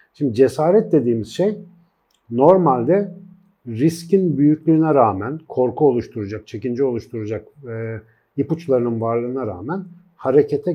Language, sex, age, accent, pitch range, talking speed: Turkish, male, 50-69, native, 120-155 Hz, 95 wpm